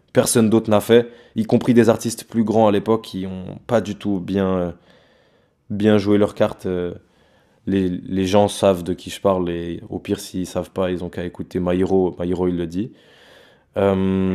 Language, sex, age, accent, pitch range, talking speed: French, male, 20-39, French, 95-110 Hz, 205 wpm